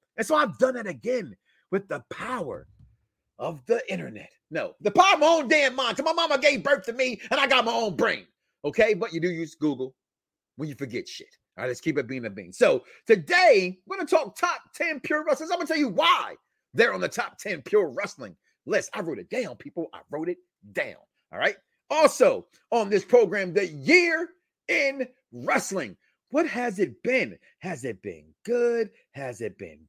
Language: English